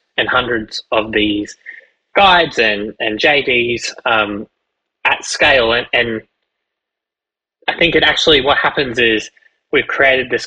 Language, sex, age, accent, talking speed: English, male, 20-39, Australian, 130 wpm